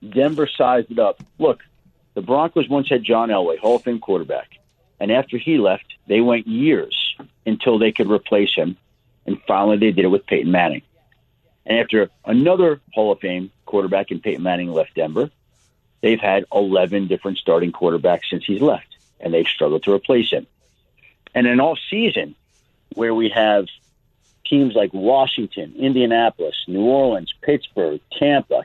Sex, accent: male, American